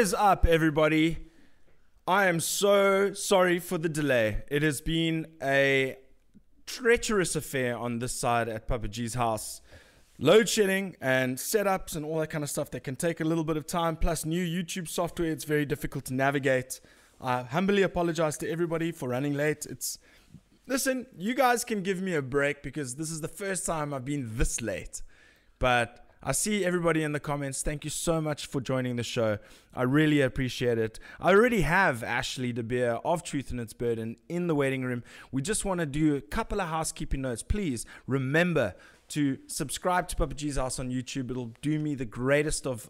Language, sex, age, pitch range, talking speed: English, male, 20-39, 130-170 Hz, 190 wpm